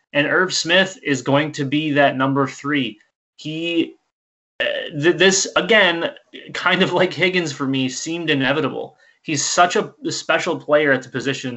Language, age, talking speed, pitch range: English, 20-39, 160 wpm, 135-155 Hz